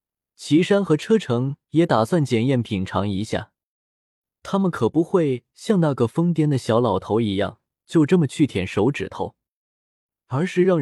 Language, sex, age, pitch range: Chinese, male, 20-39, 110-165 Hz